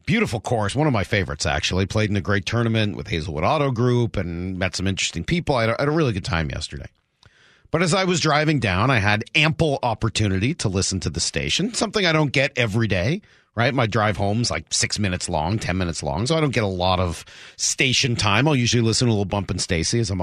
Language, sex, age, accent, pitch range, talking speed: English, male, 40-59, American, 100-140 Hz, 240 wpm